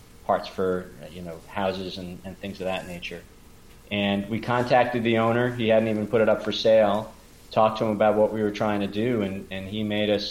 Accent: American